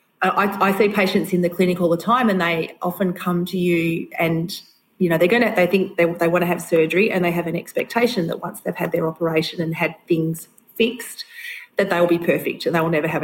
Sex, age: female, 30-49